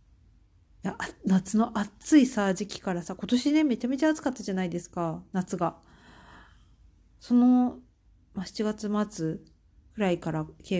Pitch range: 170-225 Hz